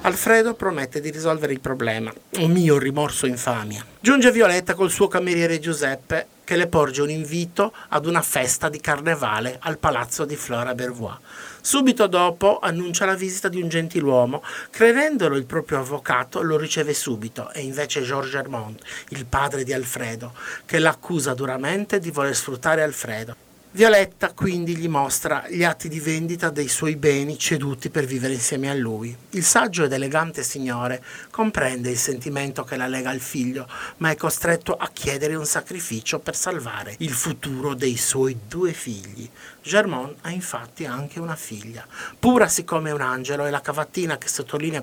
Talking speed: 160 wpm